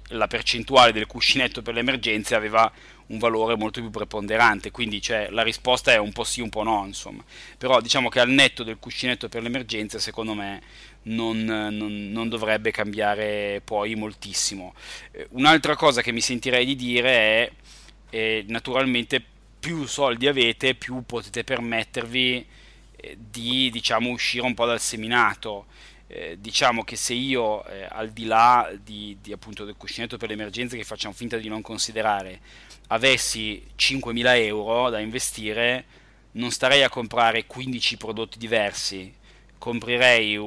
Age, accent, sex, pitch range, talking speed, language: 20-39, native, male, 110-120 Hz, 155 wpm, Italian